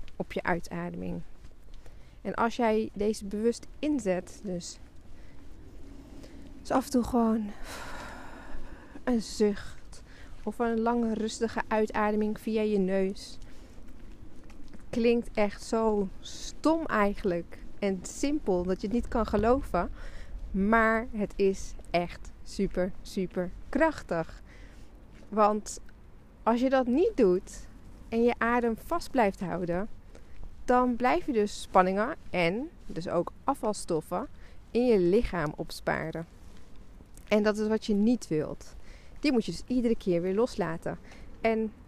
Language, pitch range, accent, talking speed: English, 175-230 Hz, Dutch, 125 wpm